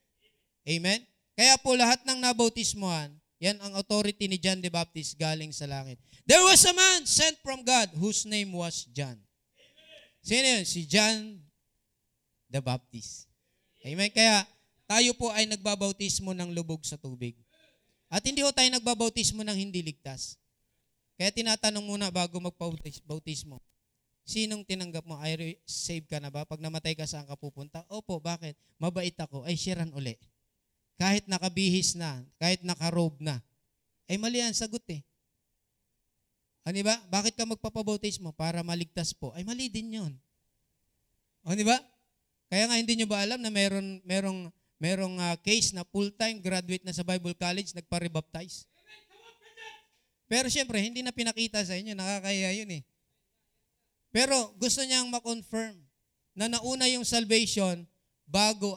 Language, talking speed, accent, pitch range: Filipino, 150 wpm, native, 160-220 Hz